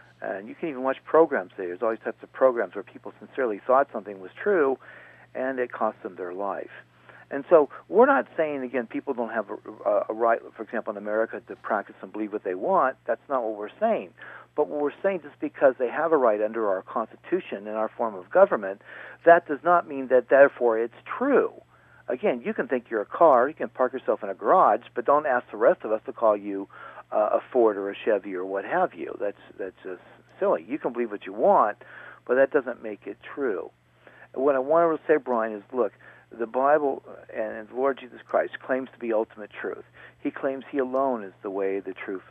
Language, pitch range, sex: English, 110-145 Hz, male